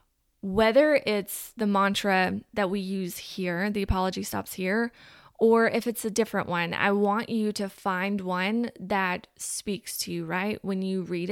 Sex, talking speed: female, 170 wpm